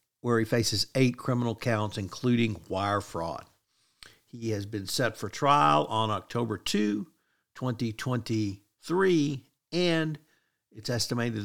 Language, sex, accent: English, male, American